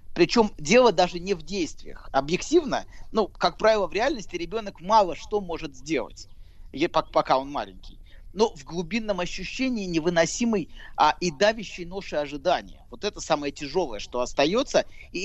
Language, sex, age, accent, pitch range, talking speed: Russian, male, 30-49, native, 140-210 Hz, 145 wpm